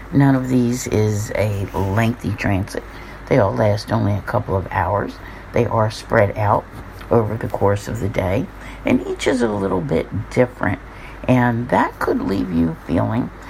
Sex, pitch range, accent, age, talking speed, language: female, 100-125 Hz, American, 60-79, 170 wpm, English